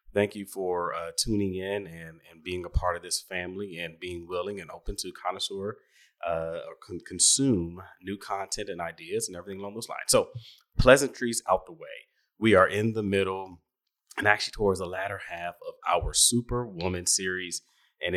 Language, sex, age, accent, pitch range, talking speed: English, male, 30-49, American, 85-100 Hz, 180 wpm